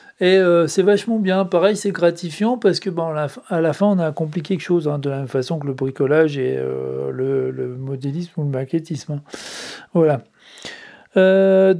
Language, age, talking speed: French, 40-59, 195 wpm